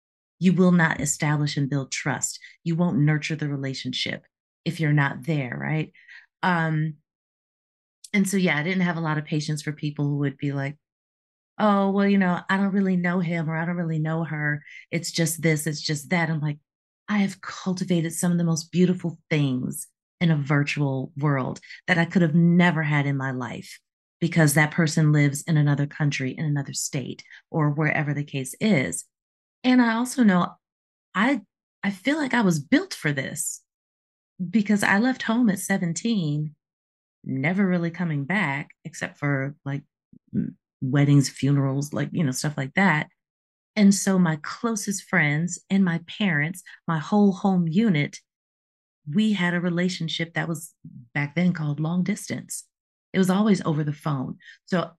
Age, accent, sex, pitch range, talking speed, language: 30-49, American, female, 145-185 Hz, 170 wpm, English